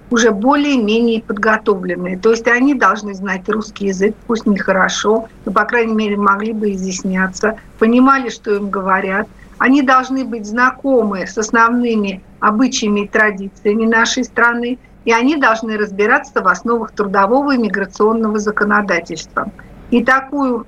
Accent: native